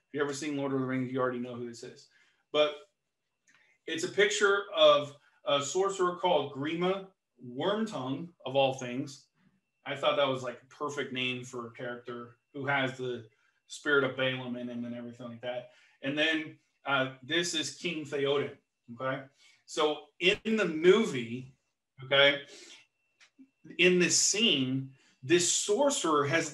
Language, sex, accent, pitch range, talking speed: English, male, American, 135-175 Hz, 155 wpm